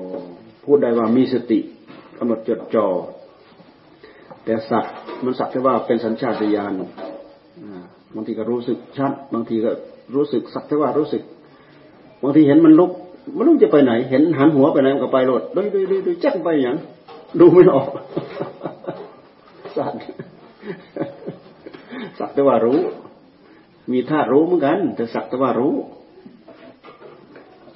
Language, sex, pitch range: Thai, male, 105-135 Hz